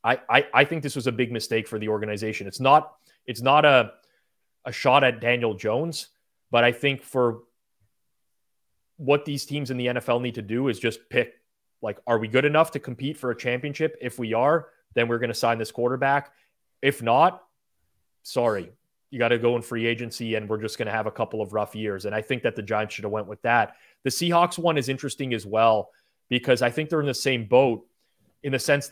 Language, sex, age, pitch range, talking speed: English, male, 30-49, 115-140 Hz, 220 wpm